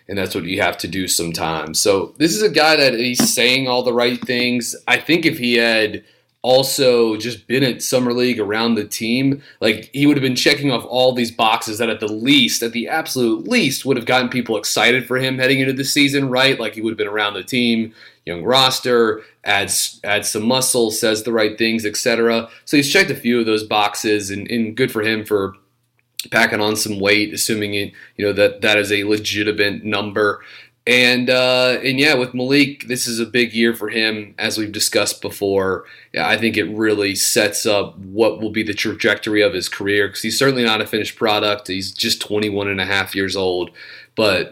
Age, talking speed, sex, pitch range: 30-49, 215 wpm, male, 105-125 Hz